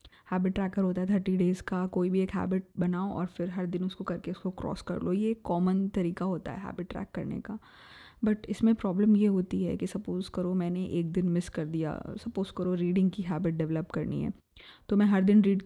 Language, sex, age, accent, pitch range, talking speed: Hindi, female, 20-39, native, 185-230 Hz, 225 wpm